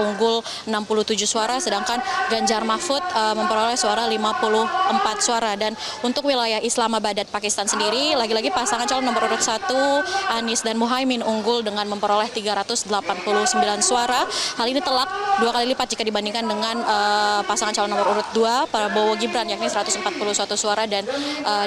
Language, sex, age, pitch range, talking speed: Indonesian, female, 20-39, 210-250 Hz, 145 wpm